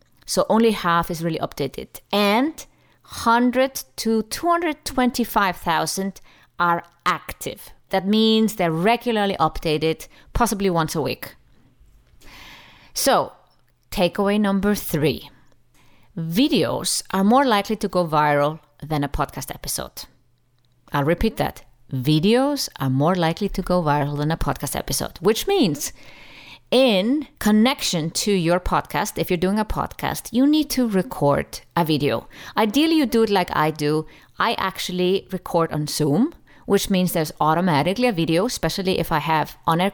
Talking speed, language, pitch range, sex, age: 135 wpm, English, 160-220 Hz, female, 30-49